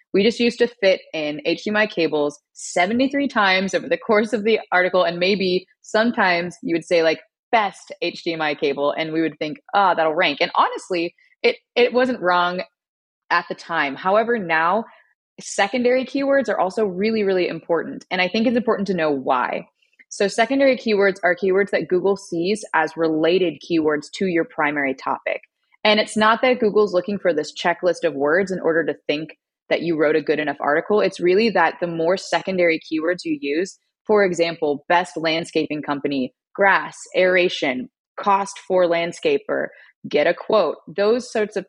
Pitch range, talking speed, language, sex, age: 160-210 Hz, 175 wpm, English, female, 20-39